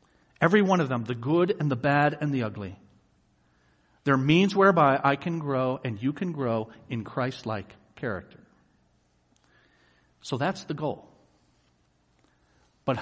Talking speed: 140 wpm